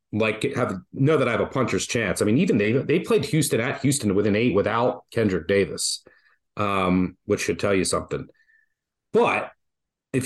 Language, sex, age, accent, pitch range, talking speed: English, male, 30-49, American, 105-130 Hz, 185 wpm